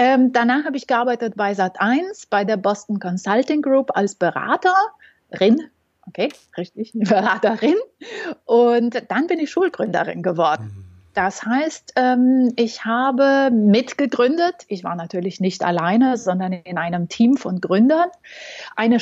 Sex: female